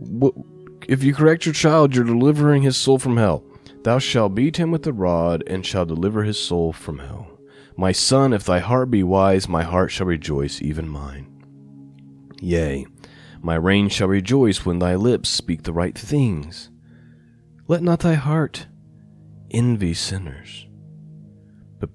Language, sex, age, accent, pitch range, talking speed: English, male, 30-49, American, 80-115 Hz, 155 wpm